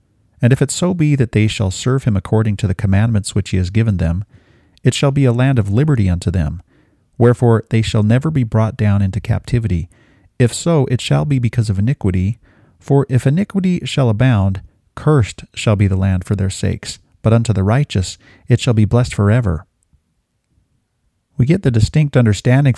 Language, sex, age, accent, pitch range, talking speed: English, male, 40-59, American, 100-125 Hz, 190 wpm